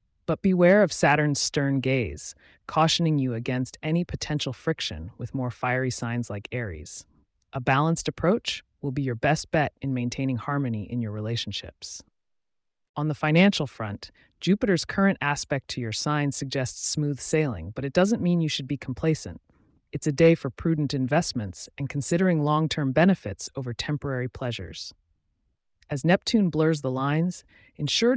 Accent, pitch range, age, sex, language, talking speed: American, 115-160 Hz, 30-49, female, English, 155 wpm